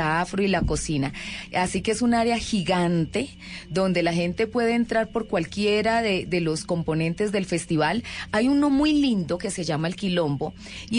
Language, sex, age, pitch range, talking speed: Spanish, female, 30-49, 175-220 Hz, 180 wpm